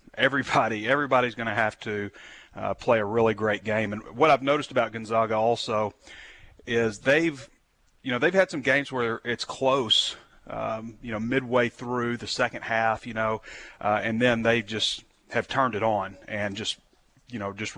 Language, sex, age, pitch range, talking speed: English, male, 30-49, 105-125 Hz, 180 wpm